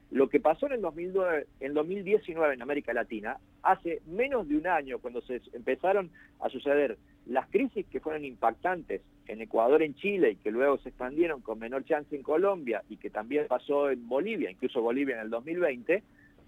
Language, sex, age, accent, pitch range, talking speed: Spanish, male, 50-69, Argentinian, 145-200 Hz, 180 wpm